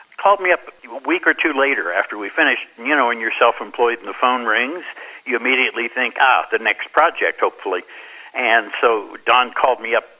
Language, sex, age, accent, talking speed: English, male, 60-79, American, 200 wpm